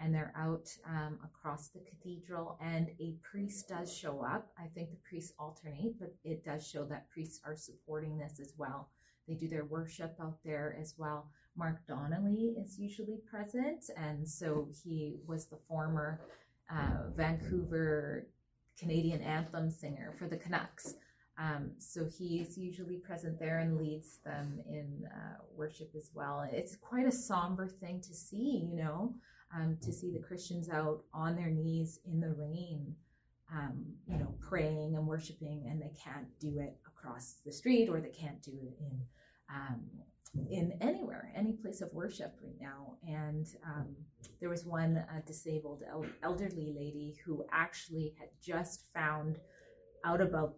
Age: 30-49